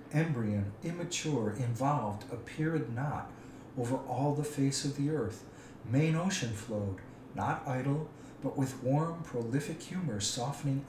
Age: 50-69